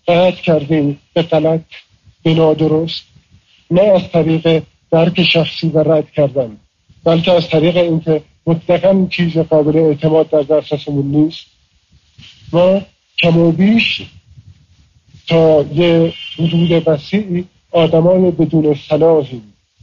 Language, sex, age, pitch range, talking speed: Persian, male, 50-69, 145-175 Hz, 105 wpm